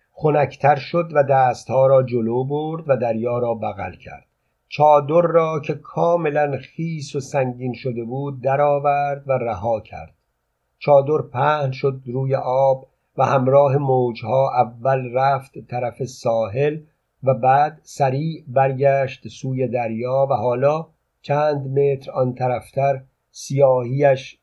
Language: Persian